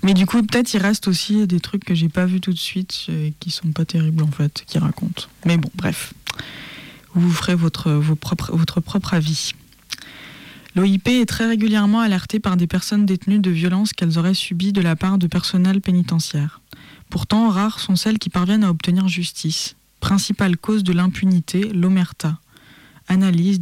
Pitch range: 165-195 Hz